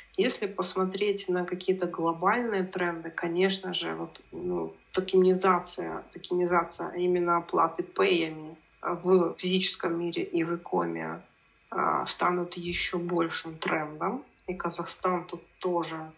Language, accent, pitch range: Russian, native, 170-190 Hz